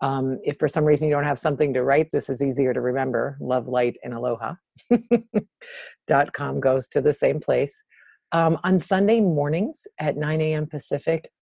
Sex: female